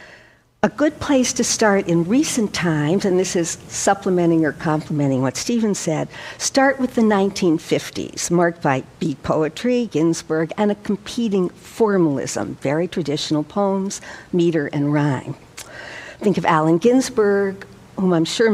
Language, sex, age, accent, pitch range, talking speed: English, female, 60-79, American, 160-215 Hz, 140 wpm